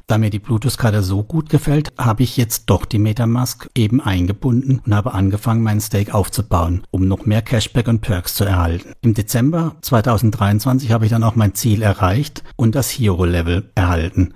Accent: German